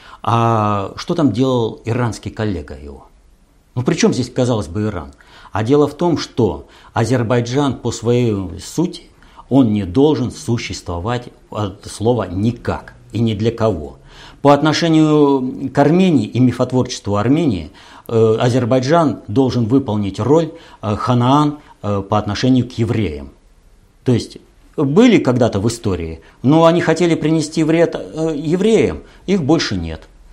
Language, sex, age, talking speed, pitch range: Russian, male, 50-69, 130 wpm, 105-155 Hz